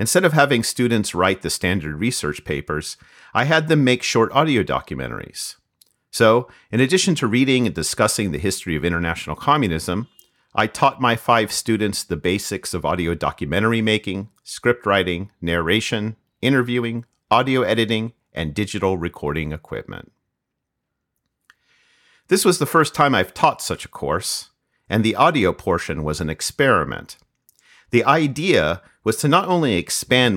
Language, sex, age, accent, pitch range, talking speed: English, male, 50-69, American, 90-125 Hz, 145 wpm